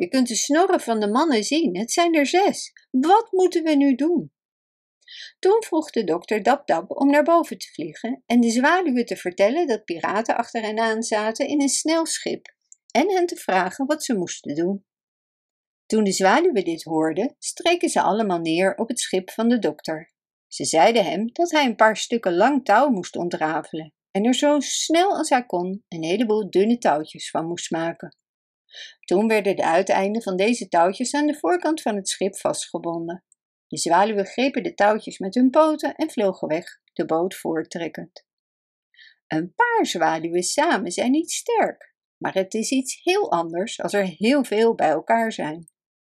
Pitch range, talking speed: 185-295 Hz, 180 wpm